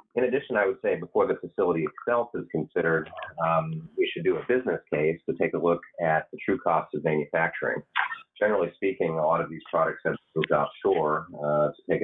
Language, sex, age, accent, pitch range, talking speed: English, male, 30-49, American, 75-90 Hz, 205 wpm